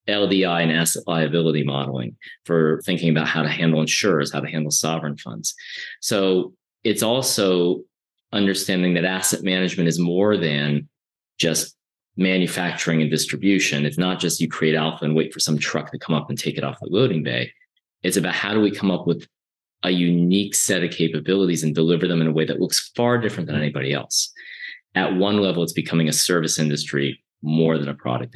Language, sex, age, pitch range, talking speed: English, male, 30-49, 75-95 Hz, 190 wpm